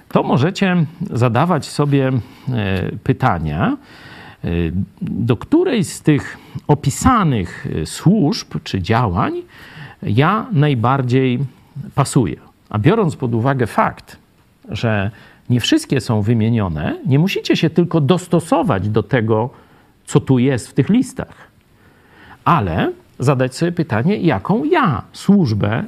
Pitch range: 110-170 Hz